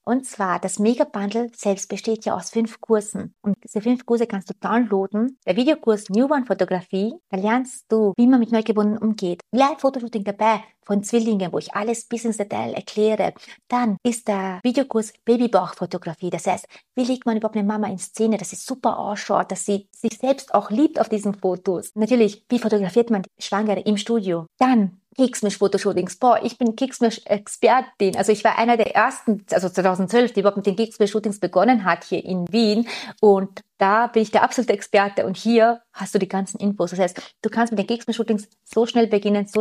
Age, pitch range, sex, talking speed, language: 30-49, 195-235 Hz, female, 190 wpm, German